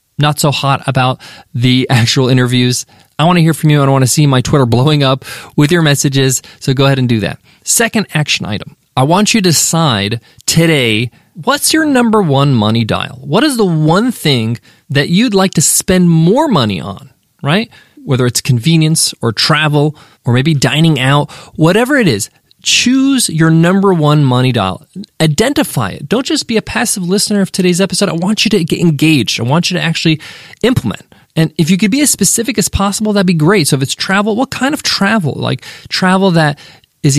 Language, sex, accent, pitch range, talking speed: English, male, American, 135-185 Hz, 200 wpm